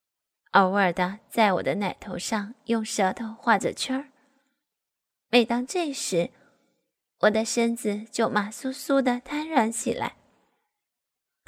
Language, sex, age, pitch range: Chinese, female, 10-29, 220-280 Hz